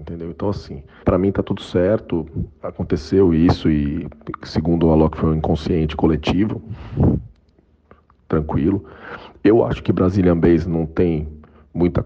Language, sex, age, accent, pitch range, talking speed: Portuguese, male, 40-59, Brazilian, 80-95 Hz, 135 wpm